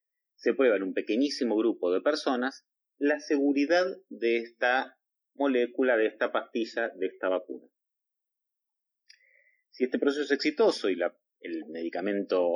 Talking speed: 135 wpm